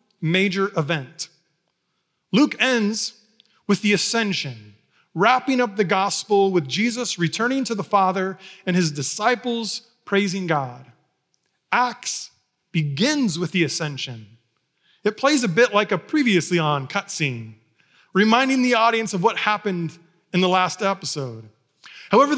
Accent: American